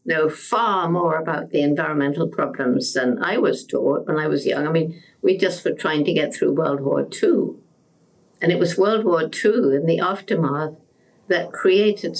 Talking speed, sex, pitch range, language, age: 185 wpm, female, 150-185 Hz, English, 60-79